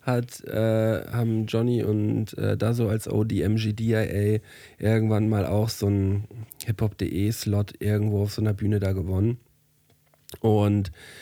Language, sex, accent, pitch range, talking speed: German, male, German, 105-125 Hz, 140 wpm